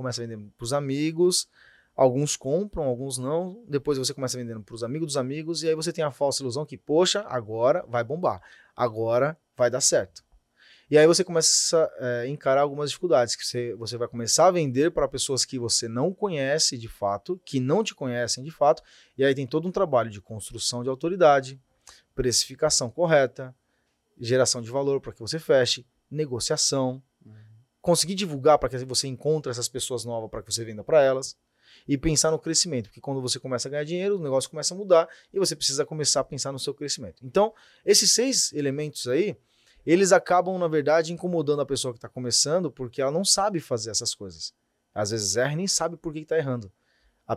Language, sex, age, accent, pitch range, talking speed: Portuguese, male, 20-39, Brazilian, 125-160 Hz, 200 wpm